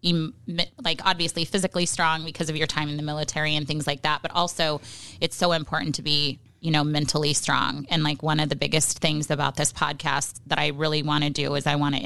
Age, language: 20-39, English